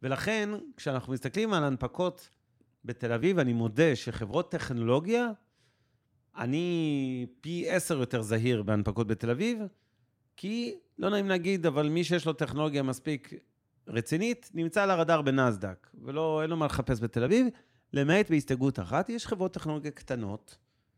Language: Hebrew